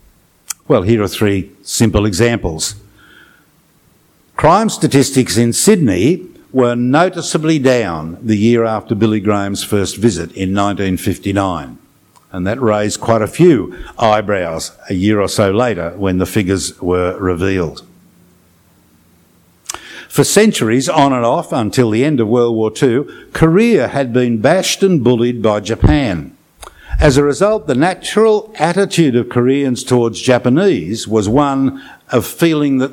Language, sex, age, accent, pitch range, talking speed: English, male, 60-79, Australian, 105-150 Hz, 135 wpm